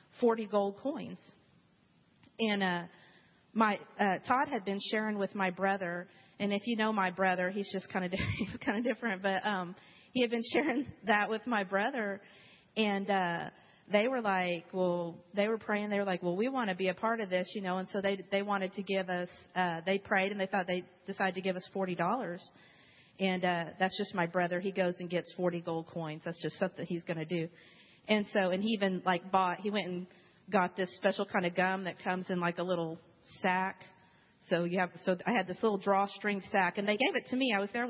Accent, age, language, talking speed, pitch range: American, 40-59, English, 230 wpm, 180-205 Hz